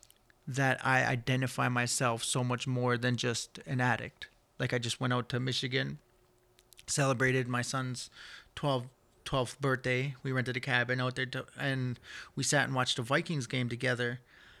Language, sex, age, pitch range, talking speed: English, male, 30-49, 120-135 Hz, 160 wpm